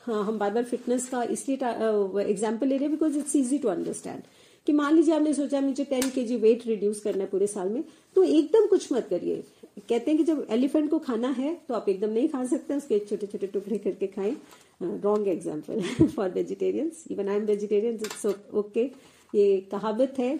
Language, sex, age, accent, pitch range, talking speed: Hindi, female, 50-69, native, 210-285 Hz, 195 wpm